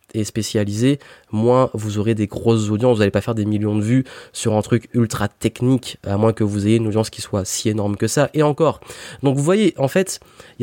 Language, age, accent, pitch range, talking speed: French, 20-39, French, 110-135 Hz, 235 wpm